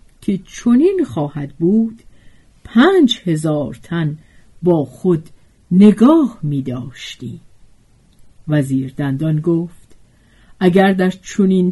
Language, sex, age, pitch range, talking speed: Persian, female, 50-69, 155-215 Hz, 90 wpm